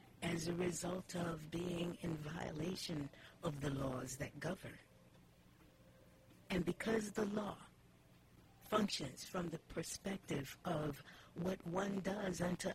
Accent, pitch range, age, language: American, 160-190 Hz, 60-79, English